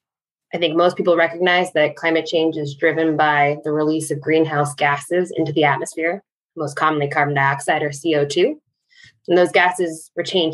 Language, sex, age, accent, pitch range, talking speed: English, female, 20-39, American, 155-210 Hz, 165 wpm